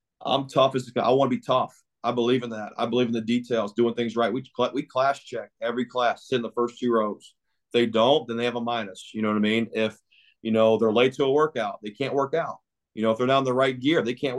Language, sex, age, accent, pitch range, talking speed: English, male, 30-49, American, 115-130 Hz, 285 wpm